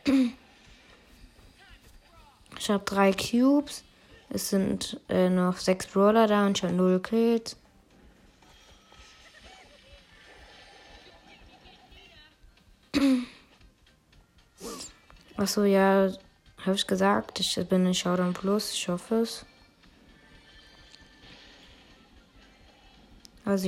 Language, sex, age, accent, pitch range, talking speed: German, female, 20-39, German, 185-205 Hz, 75 wpm